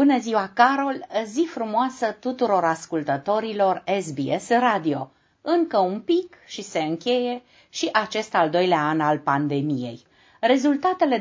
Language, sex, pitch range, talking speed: Romanian, female, 150-230 Hz, 125 wpm